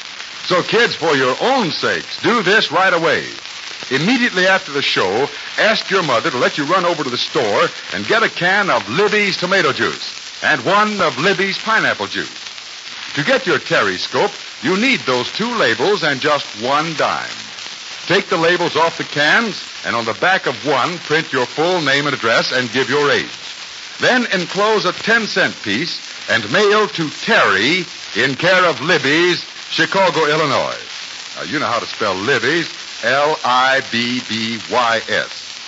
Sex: male